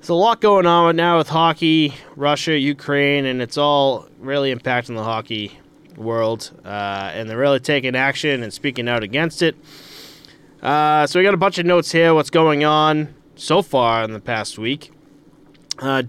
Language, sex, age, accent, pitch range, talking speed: English, male, 20-39, American, 120-150 Hz, 185 wpm